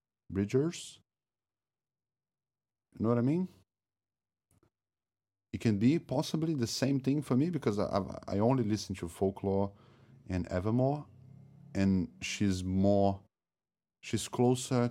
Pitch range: 85-110 Hz